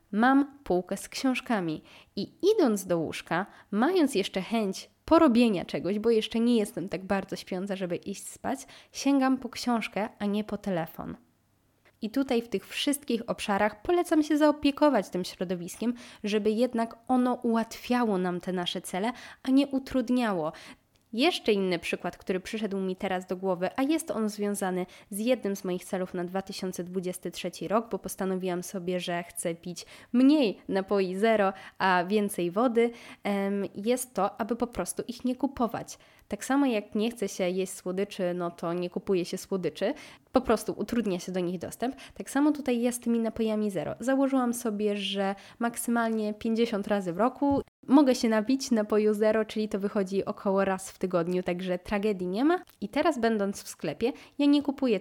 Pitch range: 190-250 Hz